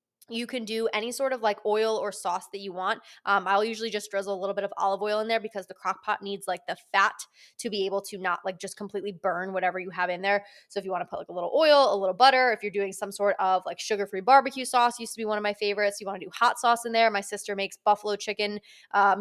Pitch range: 200-235 Hz